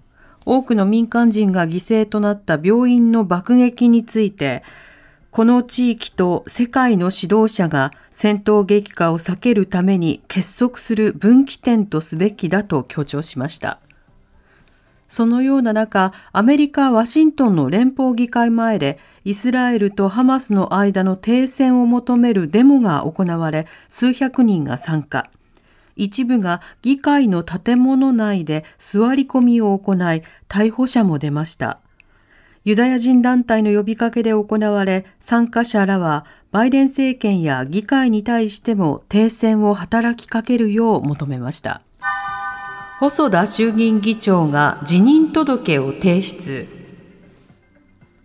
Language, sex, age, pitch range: Japanese, female, 40-59, 180-240 Hz